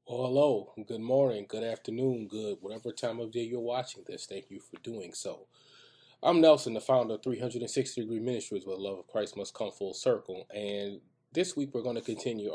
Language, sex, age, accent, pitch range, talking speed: English, male, 20-39, American, 105-135 Hz, 205 wpm